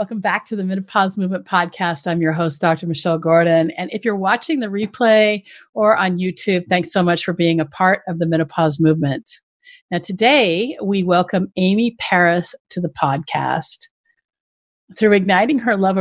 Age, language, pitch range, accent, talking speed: 50-69, English, 170-225 Hz, American, 170 wpm